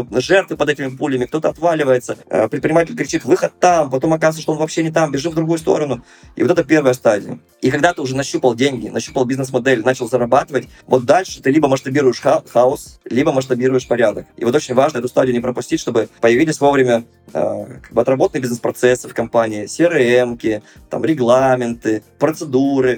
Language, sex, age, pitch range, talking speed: Russian, male, 20-39, 125-155 Hz, 165 wpm